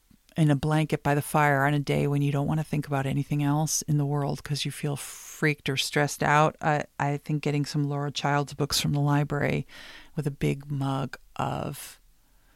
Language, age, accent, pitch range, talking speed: English, 50-69, American, 145-165 Hz, 210 wpm